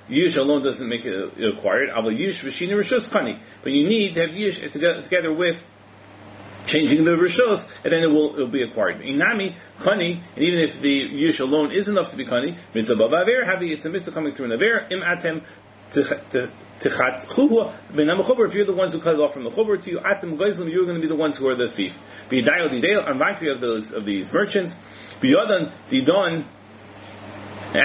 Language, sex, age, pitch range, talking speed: English, male, 40-59, 130-185 Hz, 185 wpm